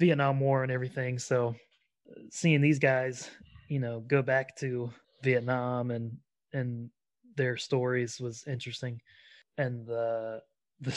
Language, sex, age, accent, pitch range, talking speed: English, male, 20-39, American, 120-140 Hz, 125 wpm